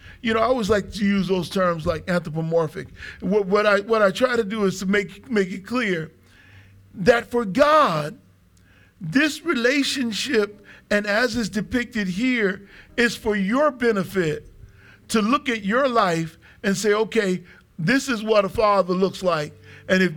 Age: 50-69